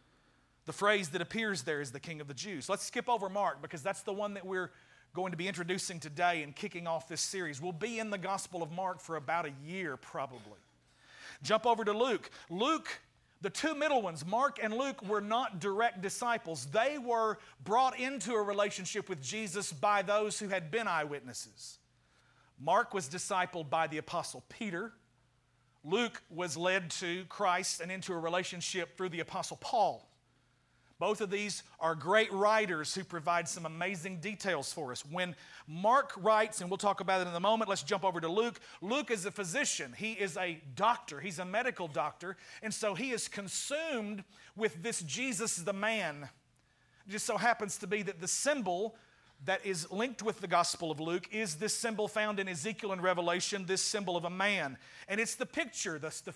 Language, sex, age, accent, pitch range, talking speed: English, male, 40-59, American, 170-215 Hz, 190 wpm